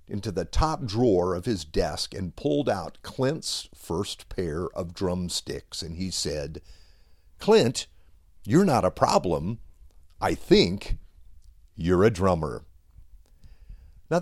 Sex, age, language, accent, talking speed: male, 50-69, English, American, 120 wpm